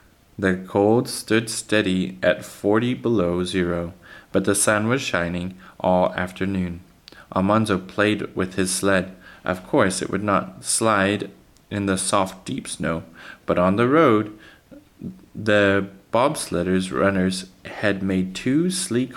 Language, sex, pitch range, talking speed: English, male, 95-110 Hz, 130 wpm